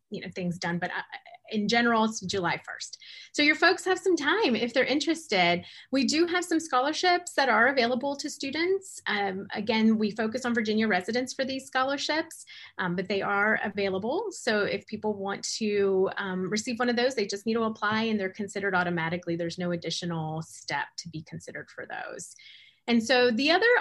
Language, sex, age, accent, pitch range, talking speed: English, female, 30-49, American, 195-255 Hz, 190 wpm